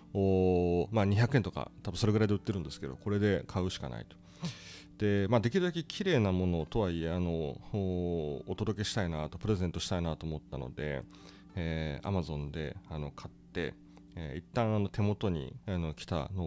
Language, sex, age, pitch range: Japanese, male, 30-49, 85-100 Hz